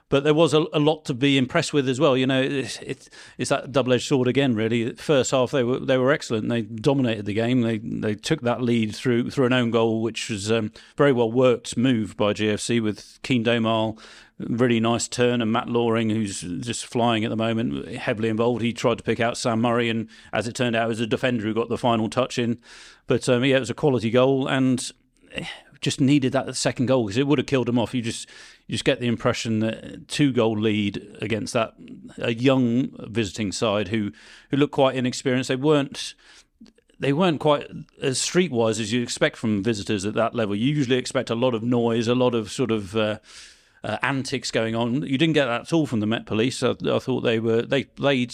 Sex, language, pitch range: male, English, 115-135 Hz